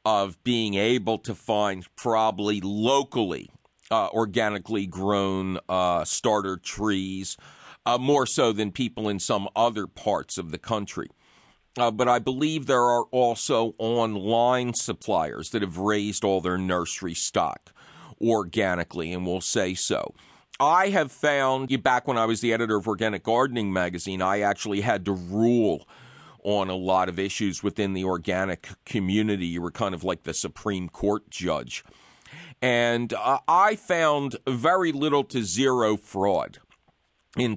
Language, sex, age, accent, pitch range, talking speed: English, male, 50-69, American, 95-125 Hz, 145 wpm